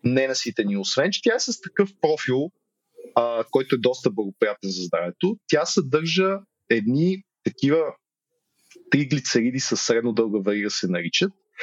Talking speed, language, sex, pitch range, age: 140 wpm, Bulgarian, male, 120-185 Hz, 30-49